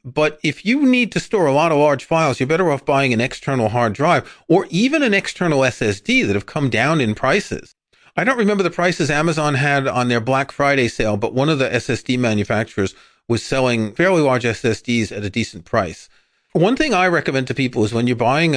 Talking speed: 215 wpm